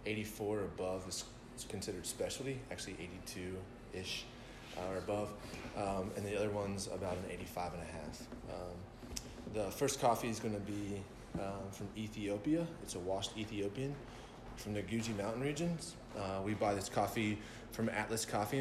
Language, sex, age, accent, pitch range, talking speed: English, male, 20-39, American, 95-115 Hz, 160 wpm